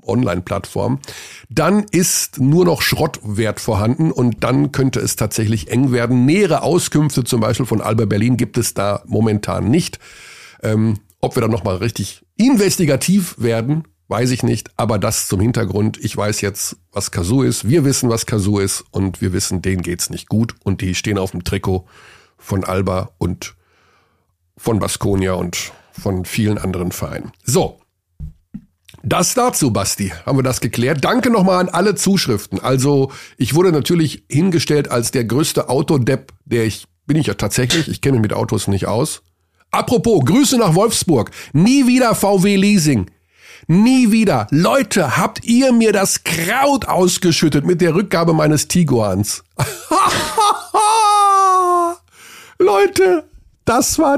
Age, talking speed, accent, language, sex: 50-69, 150 wpm, German, German, male